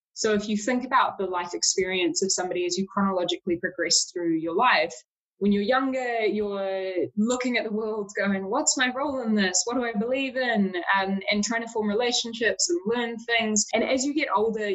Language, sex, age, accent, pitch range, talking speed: English, female, 20-39, Australian, 190-235 Hz, 205 wpm